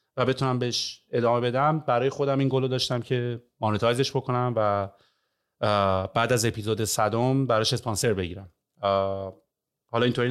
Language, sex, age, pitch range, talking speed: Persian, male, 30-49, 105-135 Hz, 135 wpm